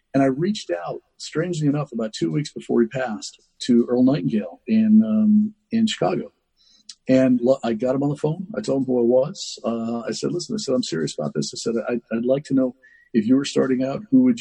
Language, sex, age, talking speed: English, male, 50-69, 235 wpm